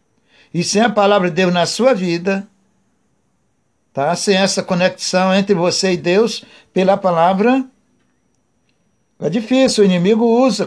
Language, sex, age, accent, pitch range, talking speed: Portuguese, male, 60-79, Brazilian, 155-200 Hz, 135 wpm